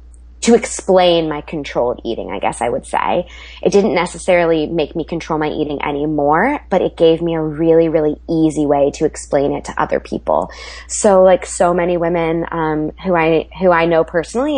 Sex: female